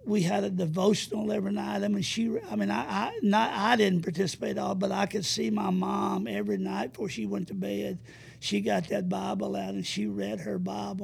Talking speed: 215 wpm